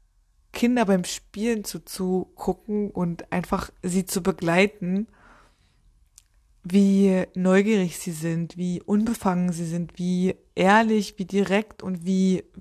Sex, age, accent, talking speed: female, 20-39, German, 120 wpm